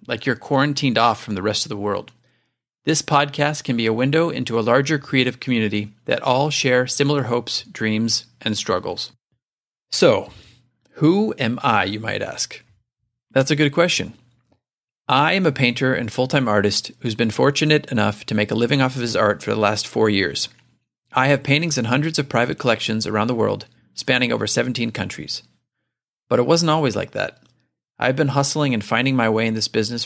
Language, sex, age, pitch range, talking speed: English, male, 40-59, 110-140 Hz, 190 wpm